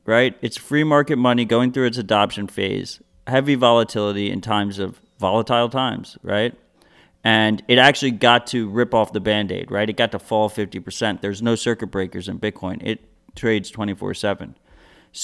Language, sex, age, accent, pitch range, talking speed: English, male, 30-49, American, 100-120 Hz, 170 wpm